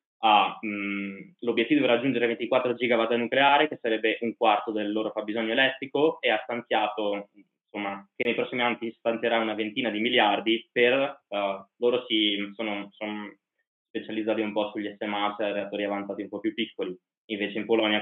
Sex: male